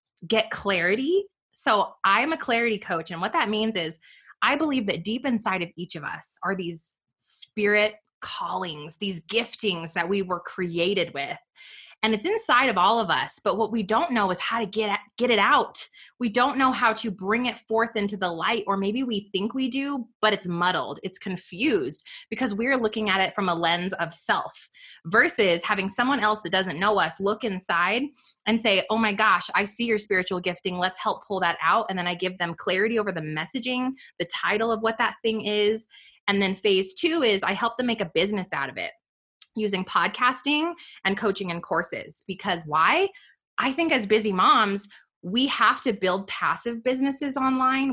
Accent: American